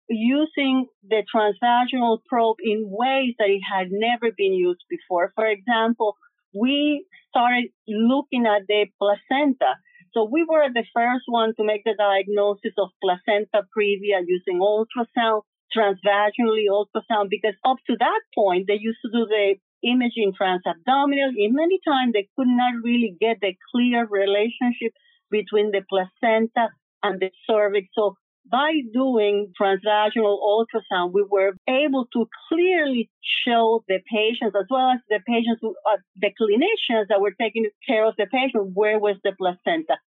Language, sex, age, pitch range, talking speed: English, female, 40-59, 205-250 Hz, 150 wpm